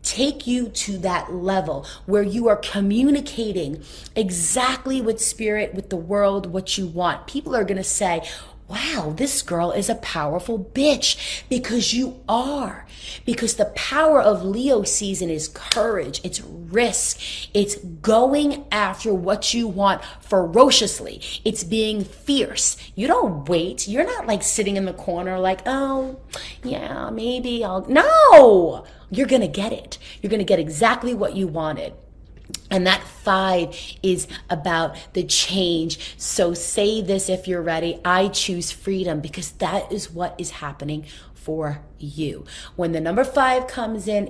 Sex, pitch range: female, 180-230 Hz